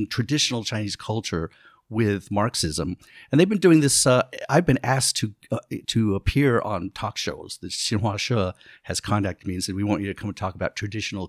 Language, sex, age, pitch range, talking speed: English, male, 50-69, 100-125 Hz, 200 wpm